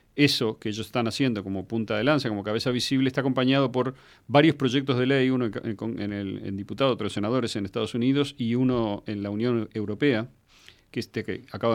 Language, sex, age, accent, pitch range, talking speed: Spanish, male, 40-59, Argentinian, 100-125 Hz, 210 wpm